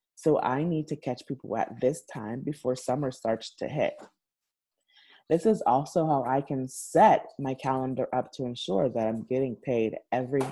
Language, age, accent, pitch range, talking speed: English, 20-39, American, 125-150 Hz, 175 wpm